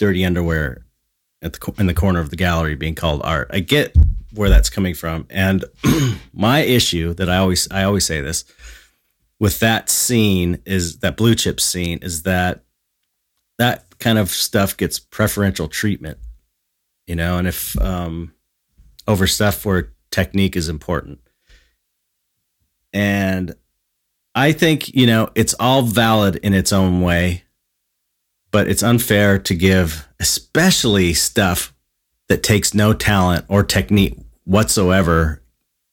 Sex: male